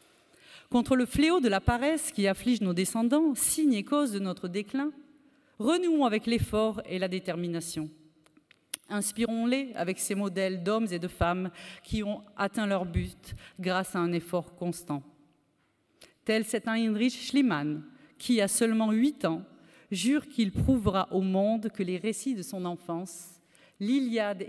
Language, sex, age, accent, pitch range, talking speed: French, female, 40-59, French, 180-235 Hz, 150 wpm